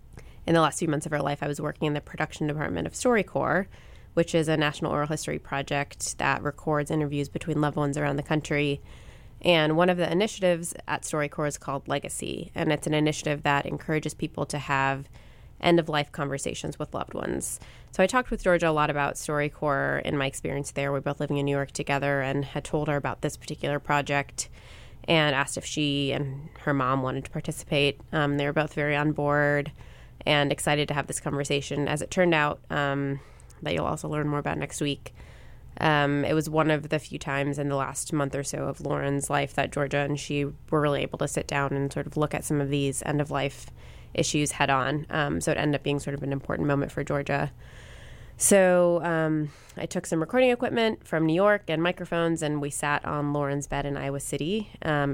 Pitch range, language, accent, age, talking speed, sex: 140-155 Hz, English, American, 20-39, 210 wpm, female